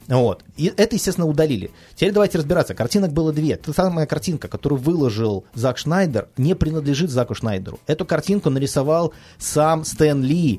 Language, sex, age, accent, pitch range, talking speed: Russian, male, 30-49, native, 115-155 Hz, 160 wpm